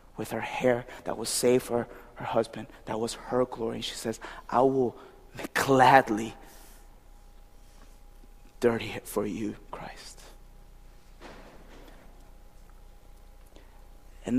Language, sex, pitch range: Korean, male, 105-140 Hz